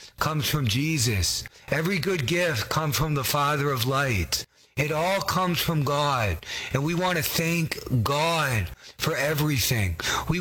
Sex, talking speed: male, 150 wpm